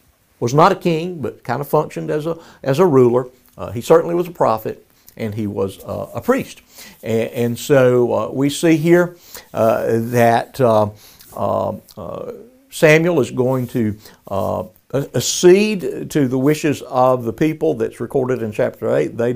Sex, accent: male, American